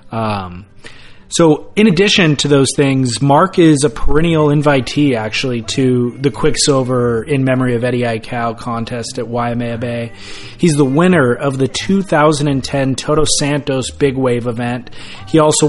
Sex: male